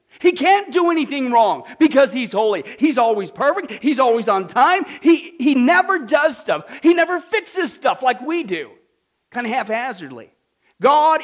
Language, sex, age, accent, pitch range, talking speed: English, male, 40-59, American, 240-335 Hz, 165 wpm